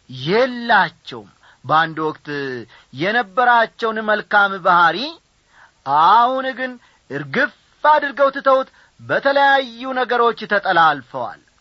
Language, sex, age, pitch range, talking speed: Amharic, male, 40-59, 165-260 Hz, 70 wpm